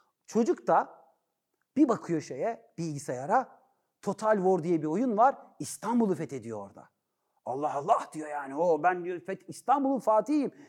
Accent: native